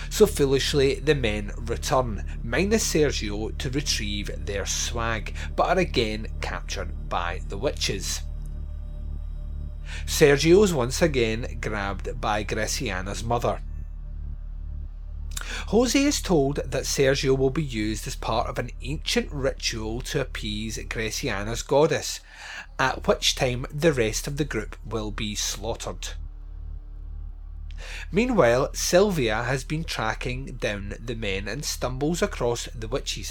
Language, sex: English, male